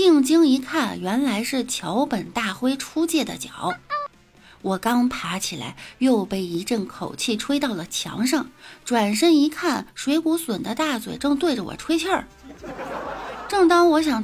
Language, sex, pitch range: Chinese, female, 190-290 Hz